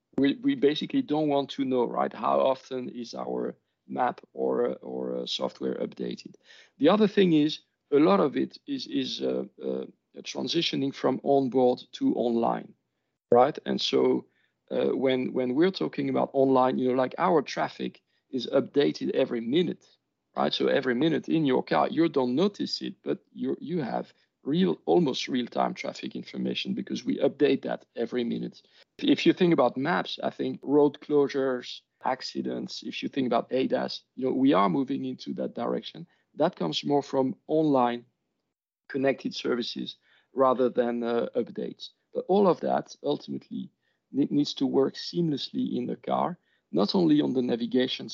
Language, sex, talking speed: English, male, 160 wpm